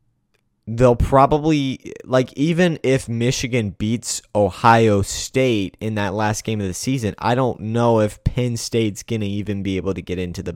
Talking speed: 170 wpm